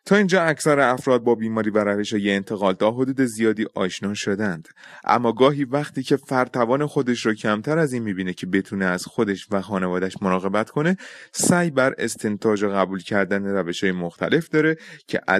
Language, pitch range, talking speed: Persian, 95-130 Hz, 170 wpm